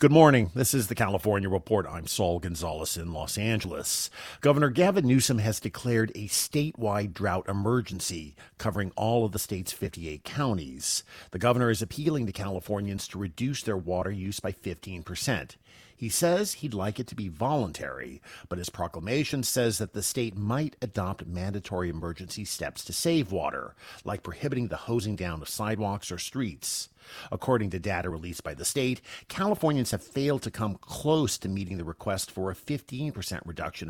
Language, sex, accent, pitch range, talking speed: English, male, American, 90-125 Hz, 170 wpm